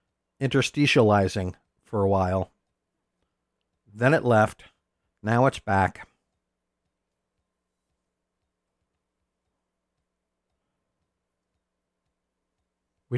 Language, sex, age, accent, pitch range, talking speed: English, male, 50-69, American, 95-125 Hz, 50 wpm